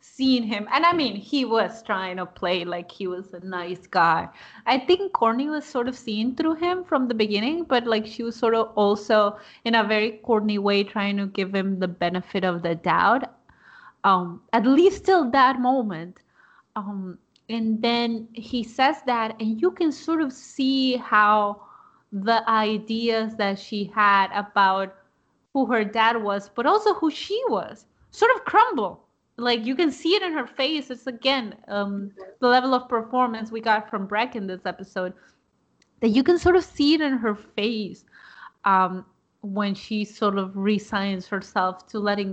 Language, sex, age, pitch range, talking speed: English, female, 20-39, 205-265 Hz, 180 wpm